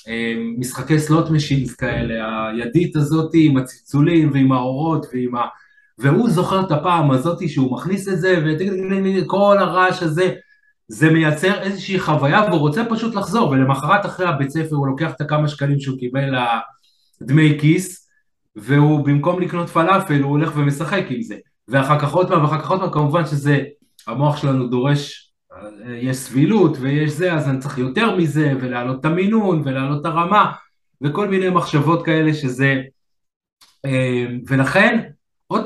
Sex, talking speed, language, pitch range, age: male, 150 wpm, Hebrew, 135-185 Hz, 20-39